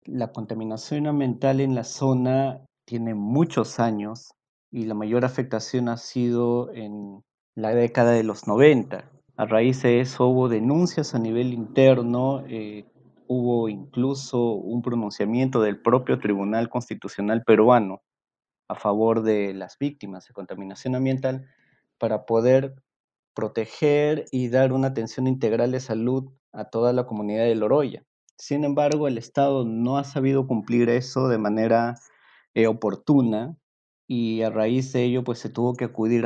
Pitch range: 105-125 Hz